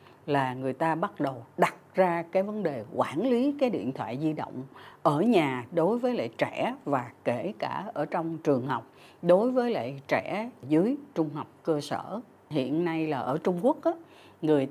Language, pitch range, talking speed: Vietnamese, 145-215 Hz, 190 wpm